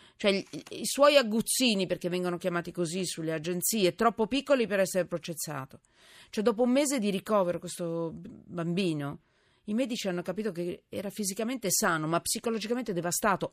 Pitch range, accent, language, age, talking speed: 175-245 Hz, native, Italian, 40-59, 155 wpm